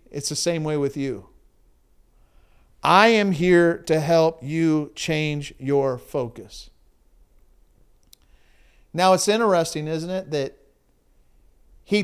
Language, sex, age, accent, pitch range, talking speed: English, male, 50-69, American, 120-180 Hz, 110 wpm